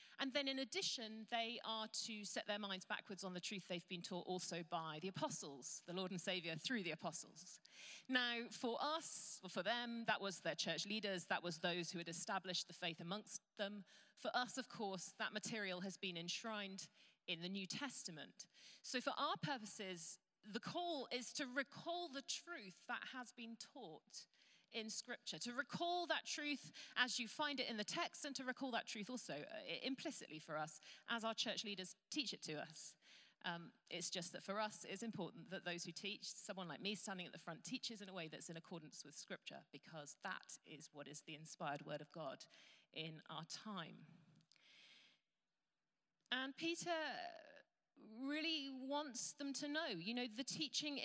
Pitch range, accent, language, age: 175-255 Hz, British, English, 40-59